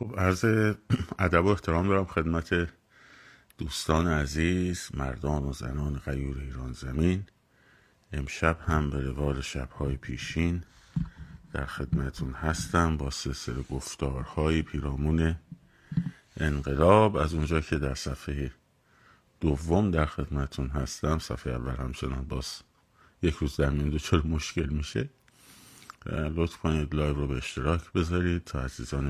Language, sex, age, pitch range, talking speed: Persian, male, 50-69, 70-85 Hz, 120 wpm